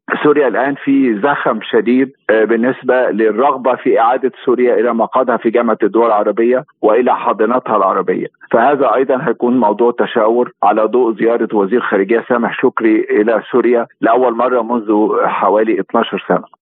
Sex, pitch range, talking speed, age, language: male, 115-155 Hz, 140 wpm, 50-69, Arabic